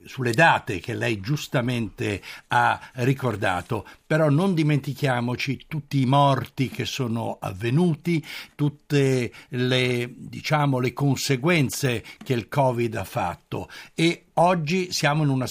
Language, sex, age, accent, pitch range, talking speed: Italian, male, 60-79, native, 125-155 Hz, 115 wpm